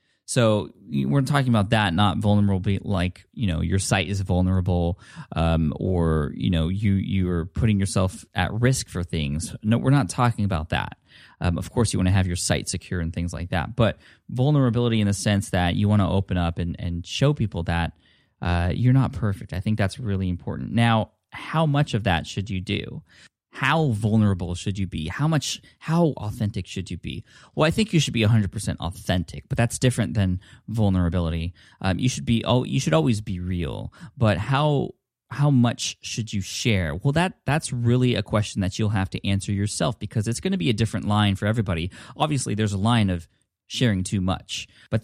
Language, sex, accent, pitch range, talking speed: English, male, American, 95-120 Hz, 205 wpm